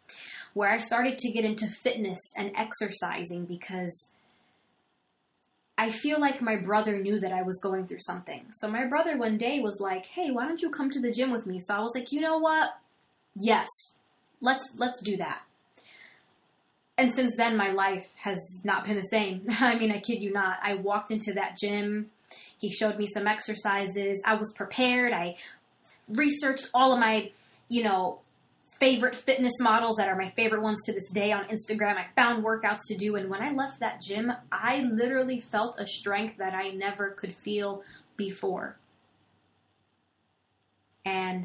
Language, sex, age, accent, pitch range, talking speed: English, female, 20-39, American, 195-250 Hz, 180 wpm